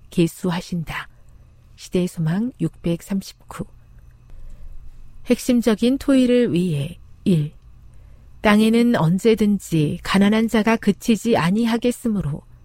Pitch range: 160-240 Hz